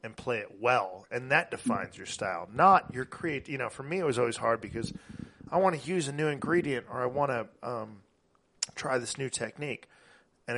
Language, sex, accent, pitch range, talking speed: English, male, American, 110-140 Hz, 215 wpm